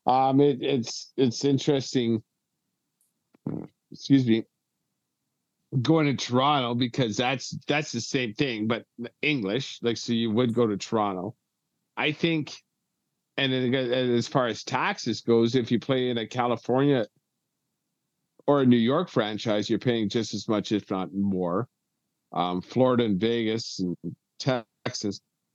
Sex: male